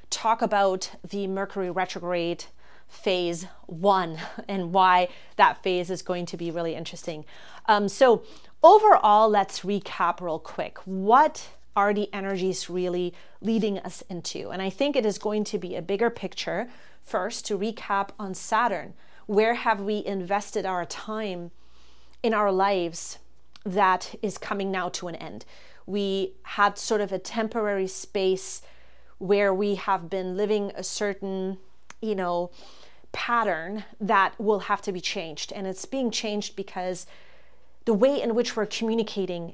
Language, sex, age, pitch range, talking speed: English, female, 30-49, 185-215 Hz, 150 wpm